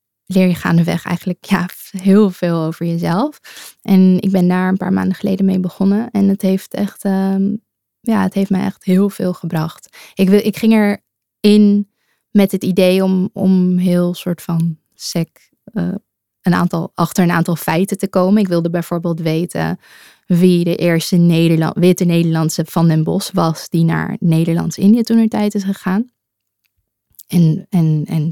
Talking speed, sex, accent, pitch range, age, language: 160 wpm, female, Dutch, 165-195 Hz, 20-39, Dutch